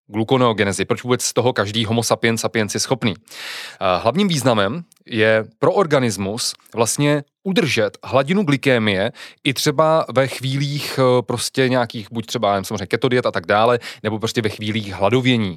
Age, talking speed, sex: 20-39, 150 wpm, male